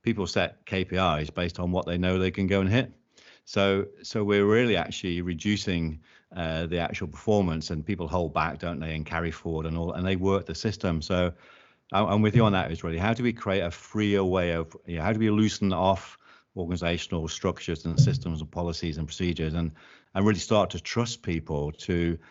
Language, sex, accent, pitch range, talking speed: English, male, British, 85-100 Hz, 210 wpm